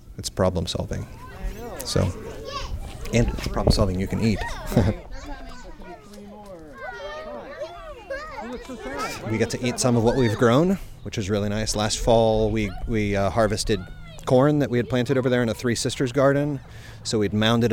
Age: 30-49